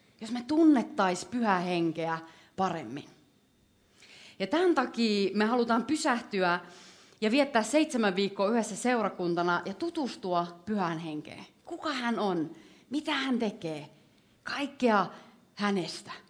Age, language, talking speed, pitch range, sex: 30-49, Finnish, 105 wpm, 180-240 Hz, female